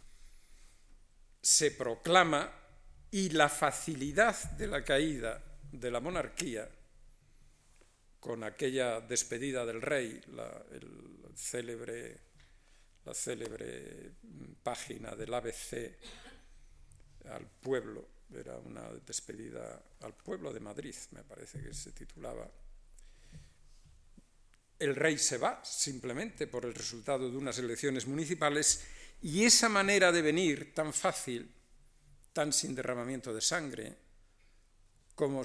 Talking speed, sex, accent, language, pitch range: 105 wpm, male, Spanish, Spanish, 120-155 Hz